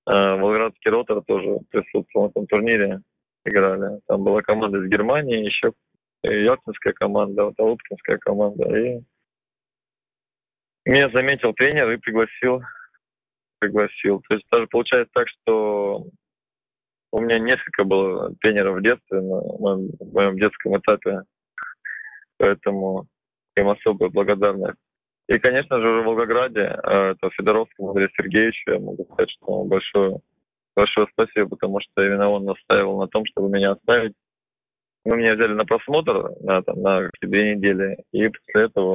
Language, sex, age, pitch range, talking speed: Russian, male, 20-39, 95-115 Hz, 135 wpm